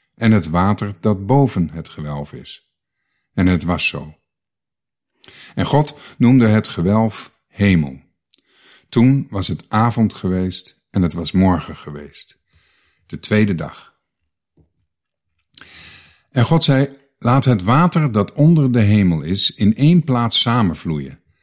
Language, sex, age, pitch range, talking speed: Dutch, male, 50-69, 90-120 Hz, 130 wpm